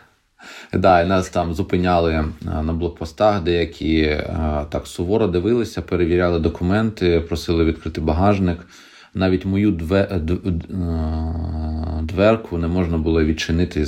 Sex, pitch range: male, 75-95 Hz